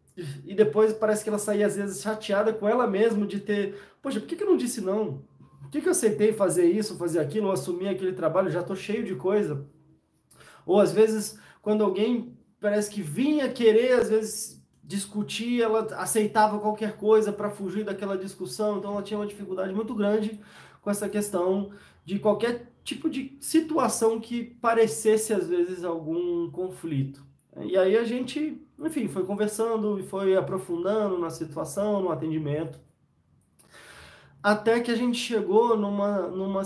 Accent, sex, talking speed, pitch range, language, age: Brazilian, male, 165 wpm, 175-215 Hz, Portuguese, 20-39